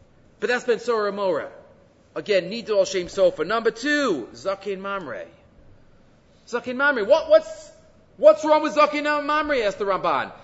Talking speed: 155 wpm